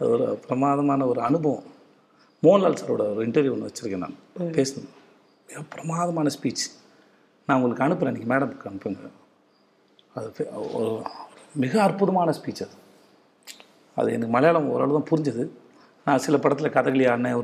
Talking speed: 130 wpm